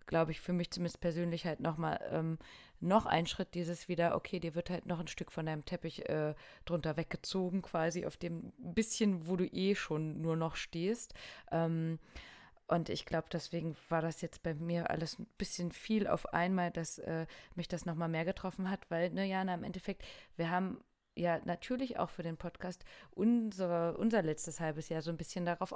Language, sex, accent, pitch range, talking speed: German, female, German, 165-190 Hz, 200 wpm